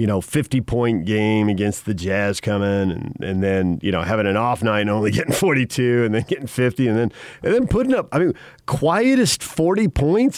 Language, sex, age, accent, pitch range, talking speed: English, male, 40-59, American, 115-165 Hz, 220 wpm